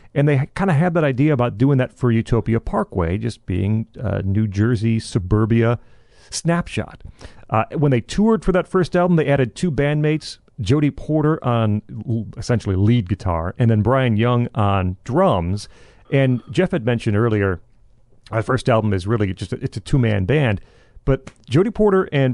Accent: American